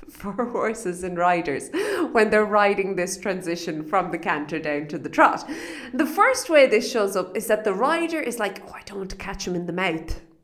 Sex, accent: female, Irish